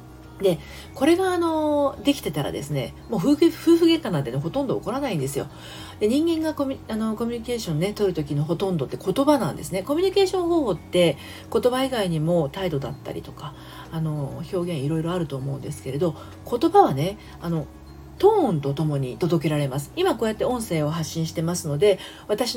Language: Japanese